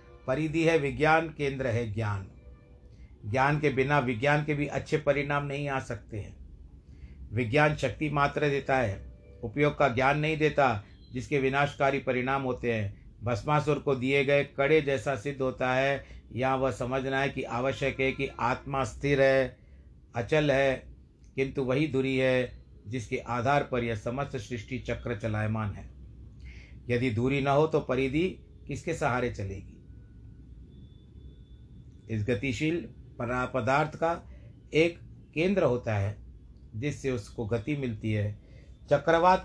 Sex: male